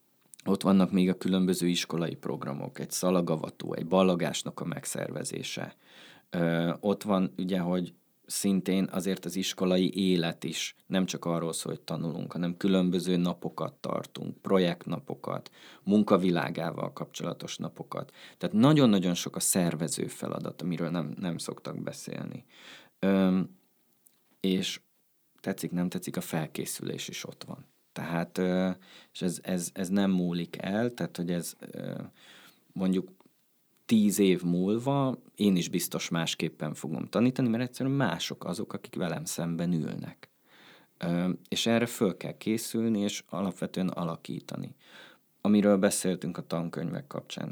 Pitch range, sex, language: 85-100 Hz, male, Hungarian